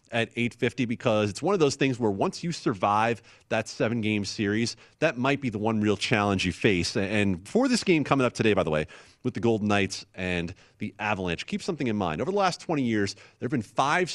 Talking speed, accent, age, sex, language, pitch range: 235 wpm, American, 30-49, male, English, 100-140 Hz